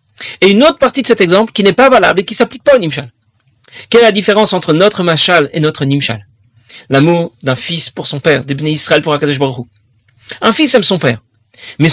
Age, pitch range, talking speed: 40-59, 135-210 Hz, 220 wpm